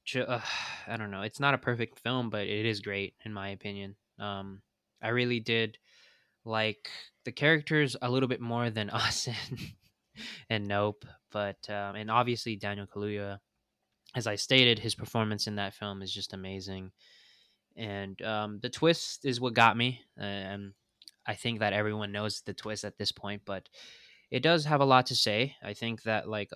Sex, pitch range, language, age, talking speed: male, 100-115 Hz, English, 20-39, 180 wpm